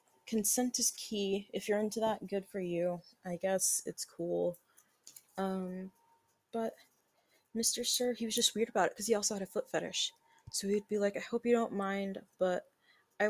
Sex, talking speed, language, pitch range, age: female, 190 wpm, English, 180-225 Hz, 20-39